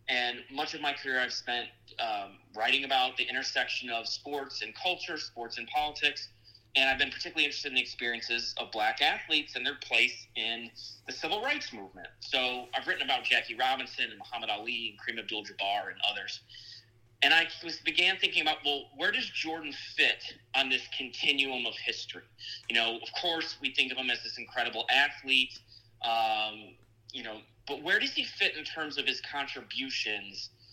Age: 30-49